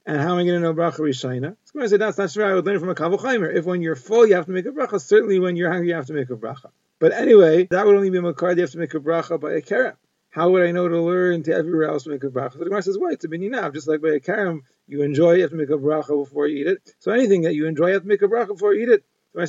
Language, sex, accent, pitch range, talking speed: English, male, American, 160-200 Hz, 345 wpm